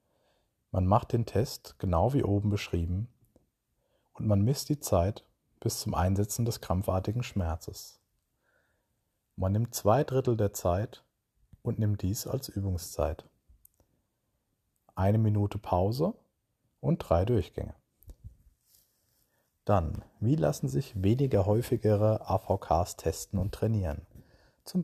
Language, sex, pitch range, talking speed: German, male, 95-120 Hz, 115 wpm